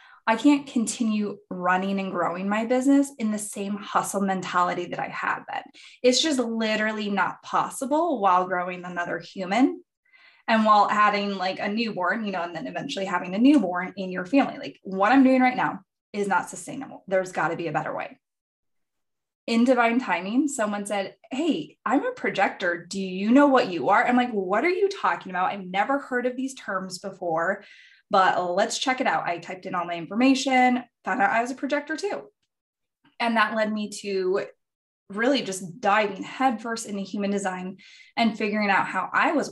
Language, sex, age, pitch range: English, female, 20-39, 190-255 Hz